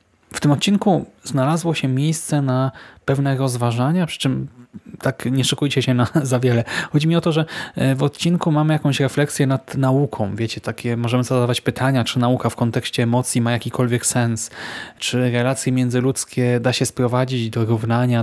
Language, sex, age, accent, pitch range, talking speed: Polish, male, 20-39, native, 120-145 Hz, 170 wpm